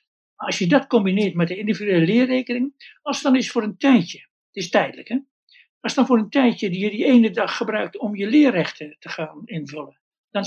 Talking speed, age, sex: 205 wpm, 60-79, male